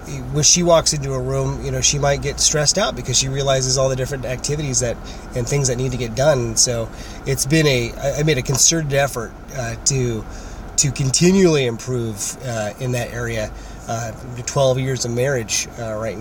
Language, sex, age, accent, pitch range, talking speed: English, male, 30-49, American, 115-145 Hz, 195 wpm